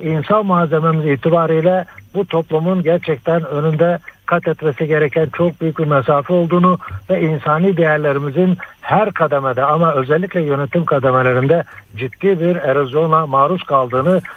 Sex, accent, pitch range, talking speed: male, native, 150-180 Hz, 120 wpm